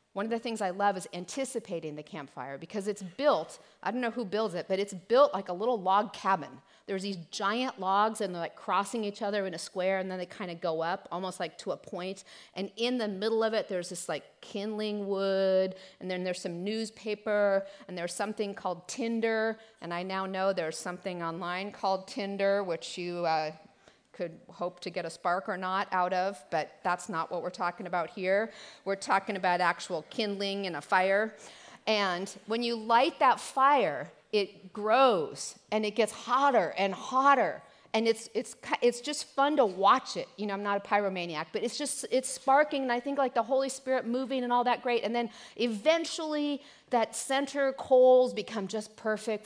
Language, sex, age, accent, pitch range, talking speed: English, female, 40-59, American, 185-230 Hz, 200 wpm